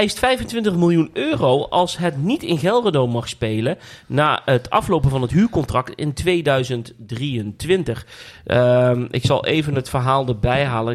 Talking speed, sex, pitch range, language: 145 wpm, male, 115-150 Hz, Dutch